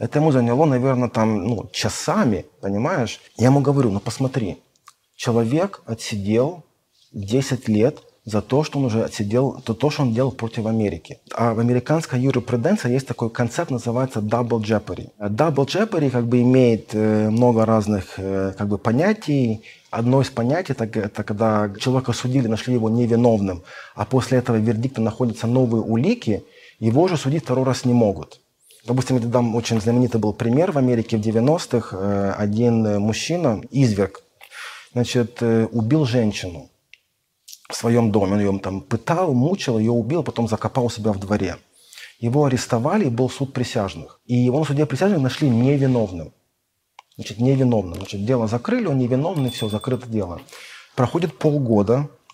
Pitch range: 110-130 Hz